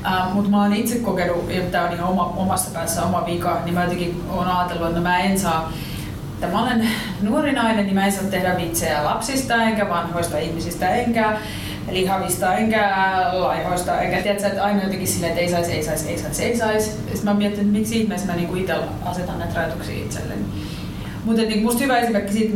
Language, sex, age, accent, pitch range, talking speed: Finnish, female, 30-49, native, 170-200 Hz, 200 wpm